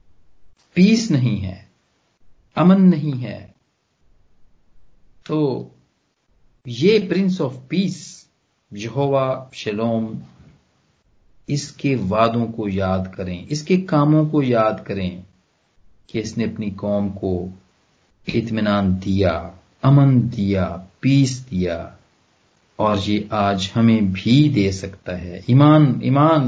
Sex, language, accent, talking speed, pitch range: male, Hindi, native, 100 wpm, 95-145 Hz